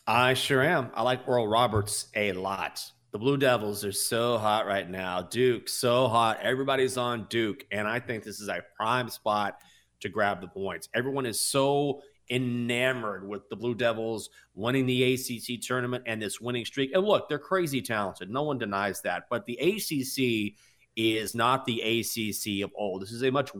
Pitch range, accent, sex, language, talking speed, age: 110-140 Hz, American, male, English, 185 wpm, 30-49